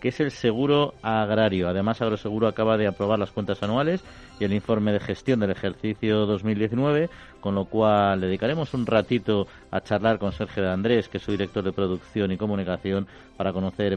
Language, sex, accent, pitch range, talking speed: Spanish, male, Spanish, 95-120 Hz, 180 wpm